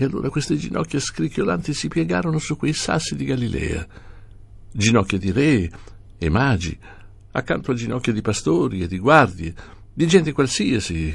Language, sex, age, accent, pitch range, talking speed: Italian, male, 60-79, native, 95-115 Hz, 150 wpm